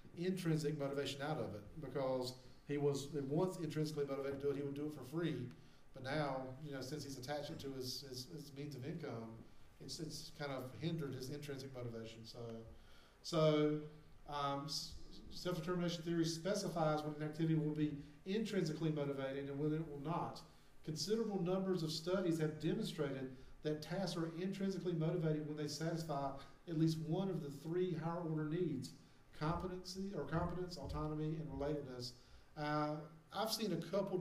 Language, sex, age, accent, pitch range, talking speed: English, male, 40-59, American, 140-160 Hz, 165 wpm